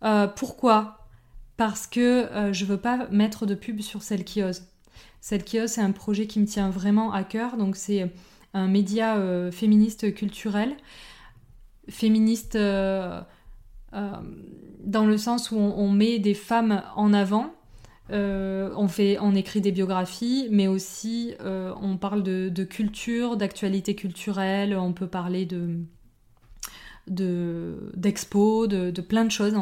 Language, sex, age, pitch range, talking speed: French, female, 20-39, 190-215 Hz, 150 wpm